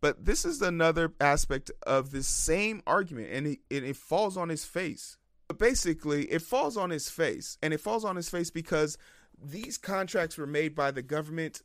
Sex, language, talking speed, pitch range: male, English, 195 wpm, 145-185 Hz